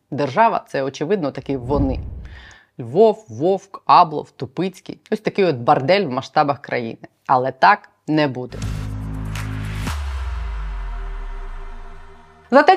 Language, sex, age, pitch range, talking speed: Ukrainian, female, 30-49, 155-210 Hz, 105 wpm